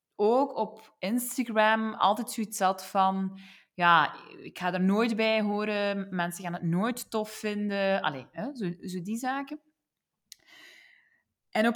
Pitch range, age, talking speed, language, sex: 185-225 Hz, 20-39, 145 wpm, Dutch, female